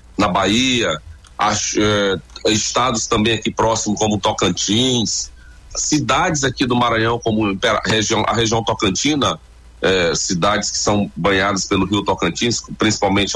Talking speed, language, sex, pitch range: 120 wpm, Portuguese, male, 95-130 Hz